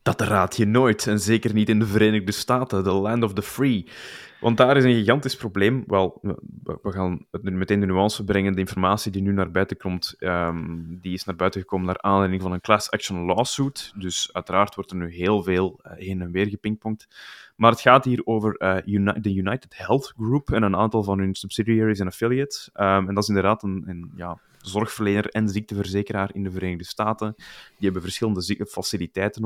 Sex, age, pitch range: male, 20-39, 95-110 Hz